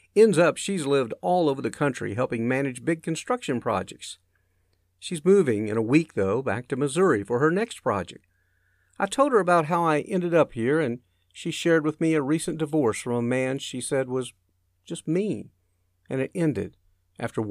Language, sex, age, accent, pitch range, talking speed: English, male, 50-69, American, 90-155 Hz, 190 wpm